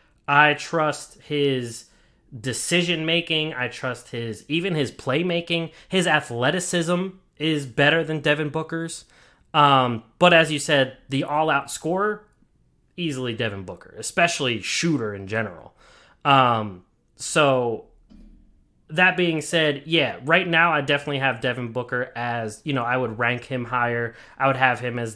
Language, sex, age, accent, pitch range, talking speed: English, male, 20-39, American, 120-170 Hz, 140 wpm